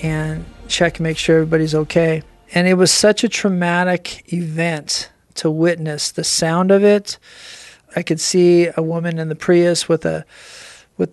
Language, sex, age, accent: English, male, 40-59, American